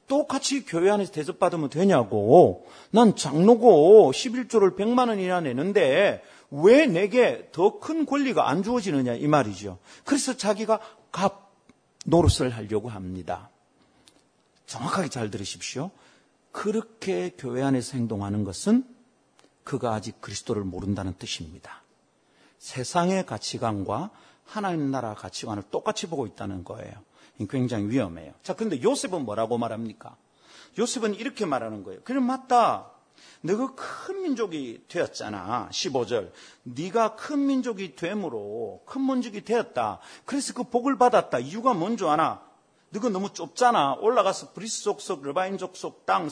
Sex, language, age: male, Korean, 40-59